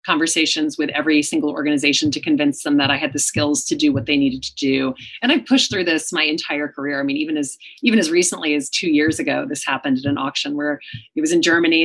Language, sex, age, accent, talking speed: English, female, 30-49, American, 250 wpm